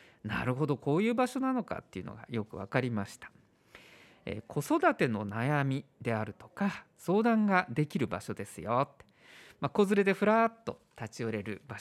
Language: Japanese